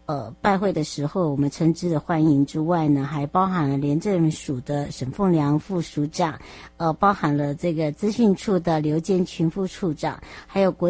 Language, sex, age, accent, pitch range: Chinese, male, 60-79, American, 150-195 Hz